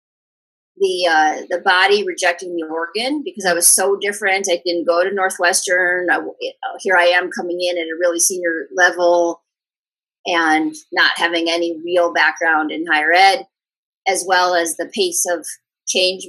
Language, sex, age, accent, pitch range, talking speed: English, female, 30-49, American, 170-200 Hz, 170 wpm